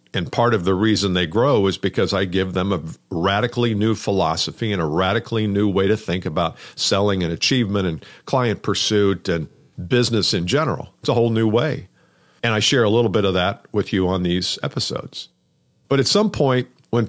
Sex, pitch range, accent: male, 95-125 Hz, American